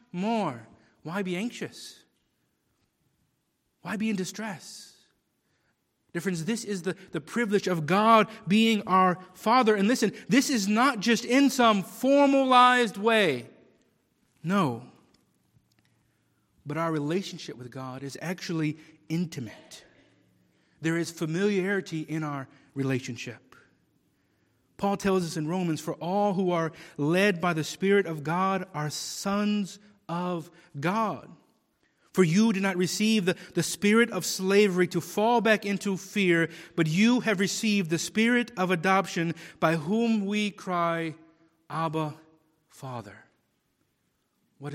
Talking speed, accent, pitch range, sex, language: 125 wpm, American, 160-205 Hz, male, English